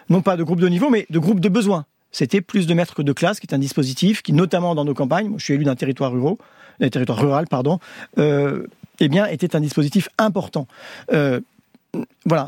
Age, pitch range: 50-69, 150-205 Hz